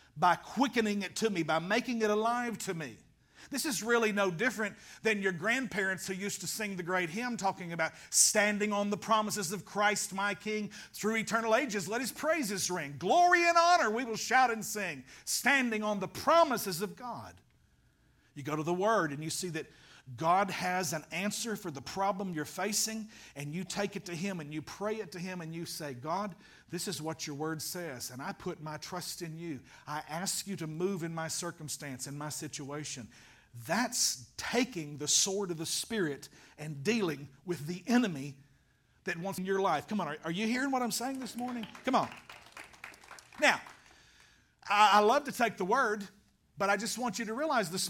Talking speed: 200 wpm